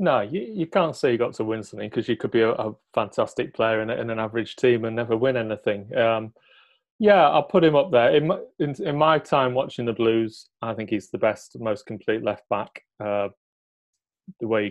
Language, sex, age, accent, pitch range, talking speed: English, male, 30-49, British, 110-130 Hz, 230 wpm